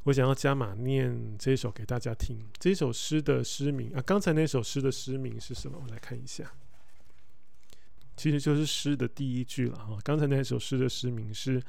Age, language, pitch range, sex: 20-39, Chinese, 120-145 Hz, male